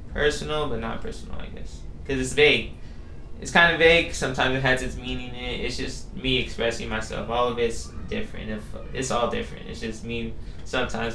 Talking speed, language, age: 195 wpm, English, 20-39